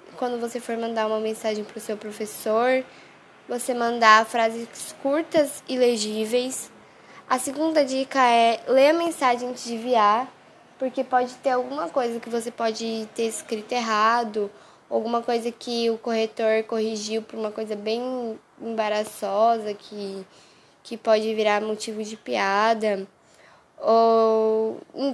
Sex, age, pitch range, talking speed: female, 10-29, 215-255 Hz, 135 wpm